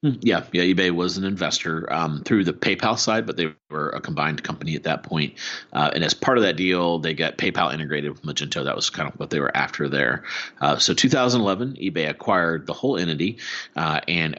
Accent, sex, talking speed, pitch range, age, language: American, male, 215 wpm, 80-100 Hz, 30-49, English